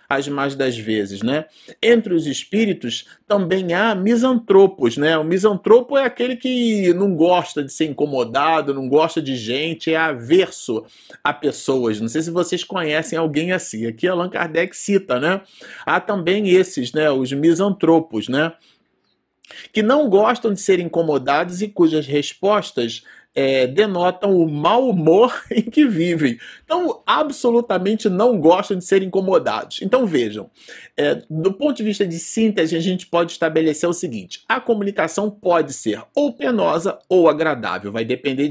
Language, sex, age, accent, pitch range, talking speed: Portuguese, male, 40-59, Brazilian, 150-205 Hz, 150 wpm